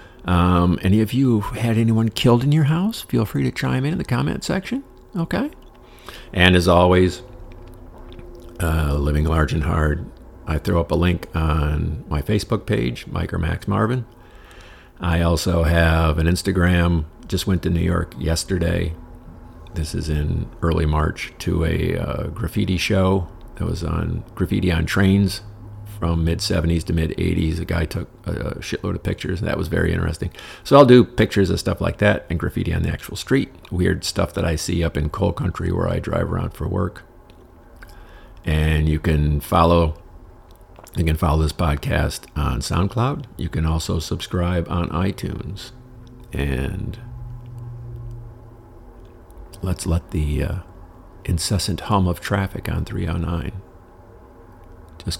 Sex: male